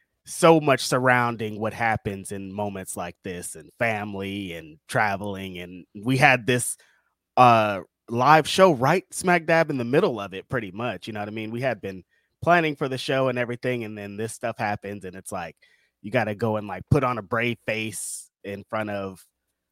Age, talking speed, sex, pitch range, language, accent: 20-39, 205 wpm, male, 100-130 Hz, English, American